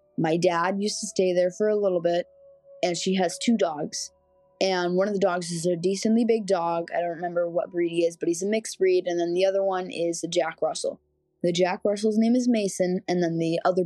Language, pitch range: English, 170-215 Hz